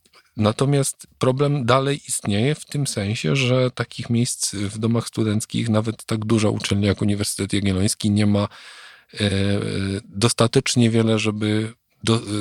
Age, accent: 40-59, native